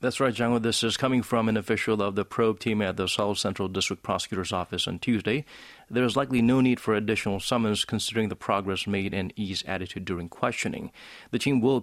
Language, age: English, 40-59